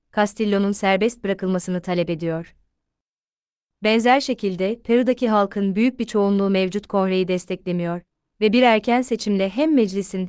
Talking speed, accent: 120 wpm, Turkish